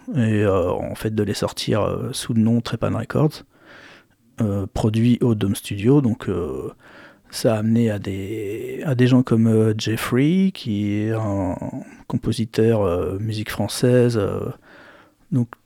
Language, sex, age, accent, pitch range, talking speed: French, male, 40-59, French, 105-125 Hz, 145 wpm